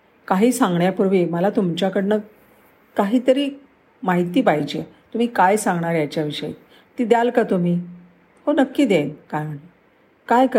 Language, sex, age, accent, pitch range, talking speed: Marathi, female, 50-69, native, 175-245 Hz, 120 wpm